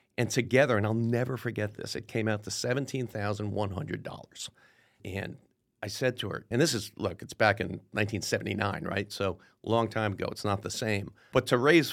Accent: American